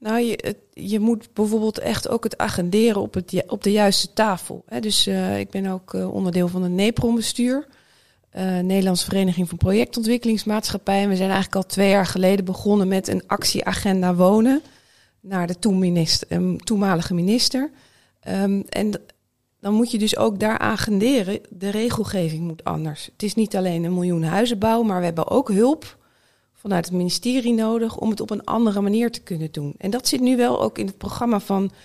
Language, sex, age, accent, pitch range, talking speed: Dutch, female, 40-59, Dutch, 180-220 Hz, 185 wpm